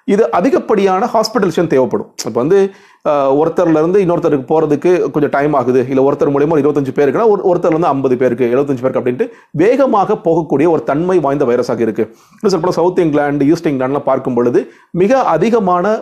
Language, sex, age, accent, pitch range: Tamil, male, 40-59, native, 135-200 Hz